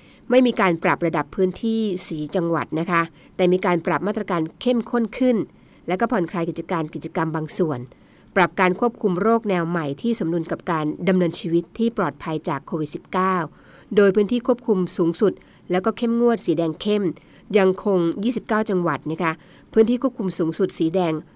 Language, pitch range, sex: Thai, 165-210 Hz, female